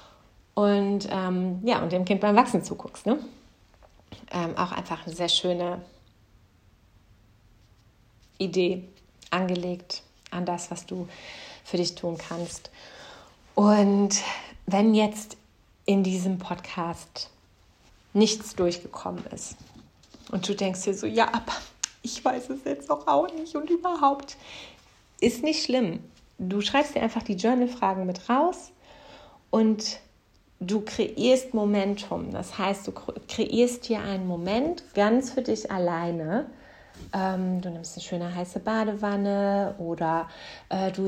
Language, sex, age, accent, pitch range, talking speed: German, female, 30-49, German, 180-220 Hz, 125 wpm